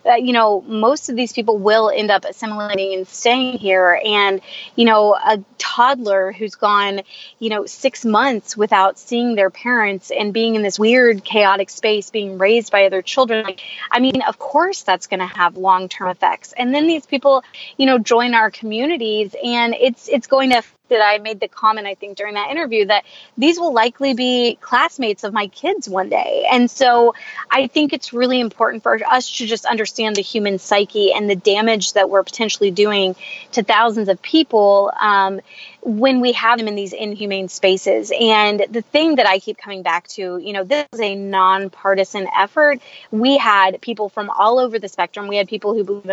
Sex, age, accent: female, 20-39, American